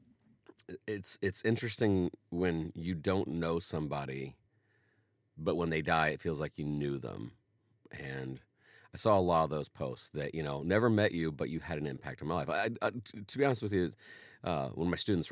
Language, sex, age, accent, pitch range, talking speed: English, male, 40-59, American, 80-110 Hz, 205 wpm